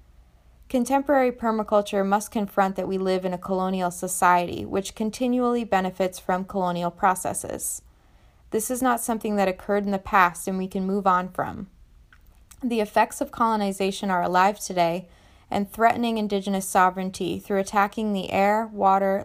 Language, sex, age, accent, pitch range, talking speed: English, female, 20-39, American, 185-210 Hz, 150 wpm